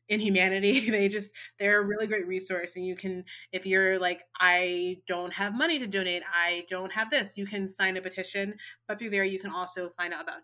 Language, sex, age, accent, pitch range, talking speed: English, female, 20-39, American, 175-200 Hz, 225 wpm